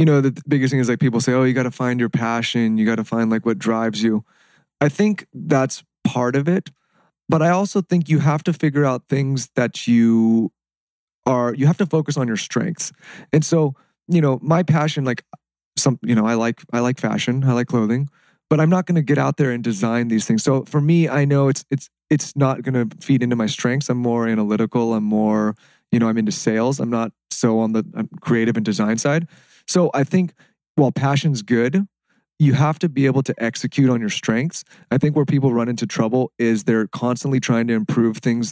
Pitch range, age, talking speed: 115-145 Hz, 30-49, 225 wpm